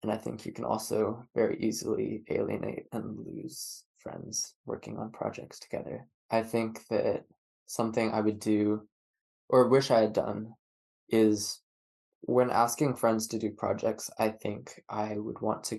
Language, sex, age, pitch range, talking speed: English, male, 20-39, 105-120 Hz, 155 wpm